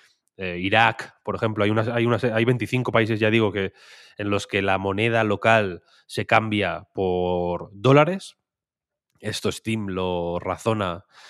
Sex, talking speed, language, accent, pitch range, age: male, 150 wpm, Spanish, Spanish, 95-110 Hz, 20-39